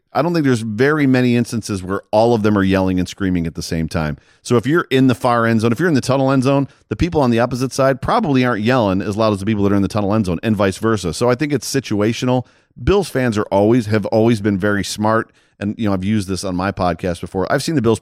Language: English